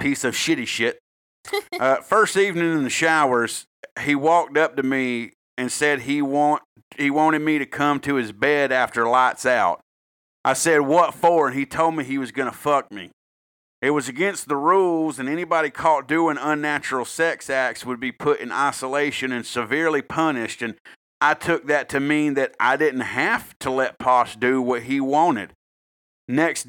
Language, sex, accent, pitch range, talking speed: English, male, American, 130-155 Hz, 180 wpm